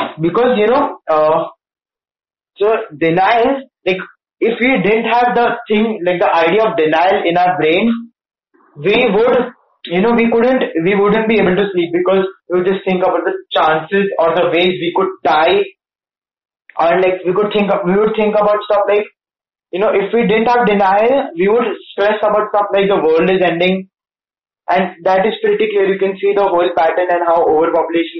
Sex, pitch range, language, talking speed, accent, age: male, 170-220 Hz, Hindi, 190 wpm, native, 20-39